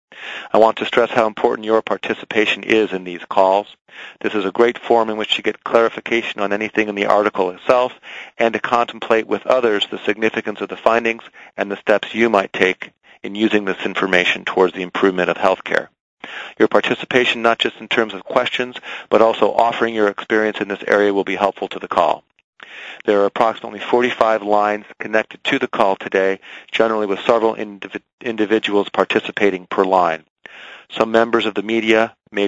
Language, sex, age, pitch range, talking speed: English, male, 40-59, 100-115 Hz, 185 wpm